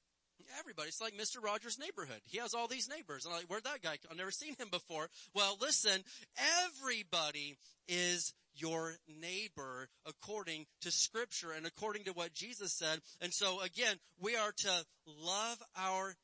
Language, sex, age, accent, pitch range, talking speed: English, male, 30-49, American, 165-210 Hz, 165 wpm